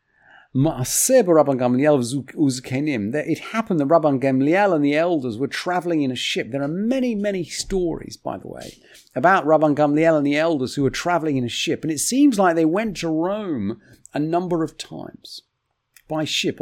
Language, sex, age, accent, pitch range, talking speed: English, male, 40-59, British, 130-160 Hz, 165 wpm